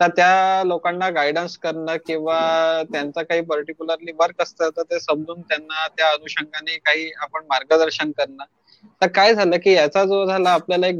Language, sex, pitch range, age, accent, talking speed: Marathi, male, 165-195 Hz, 20-39, native, 155 wpm